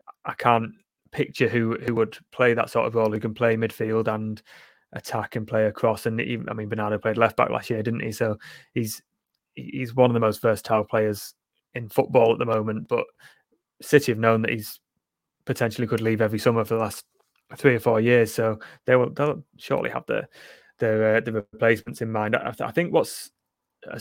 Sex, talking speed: male, 205 wpm